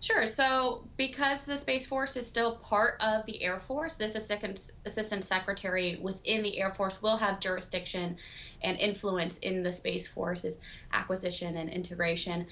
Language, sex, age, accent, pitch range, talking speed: English, female, 20-39, American, 175-200 Hz, 155 wpm